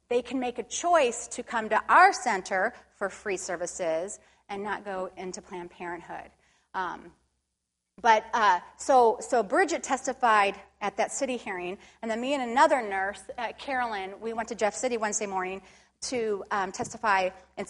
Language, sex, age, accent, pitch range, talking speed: English, female, 30-49, American, 195-250 Hz, 165 wpm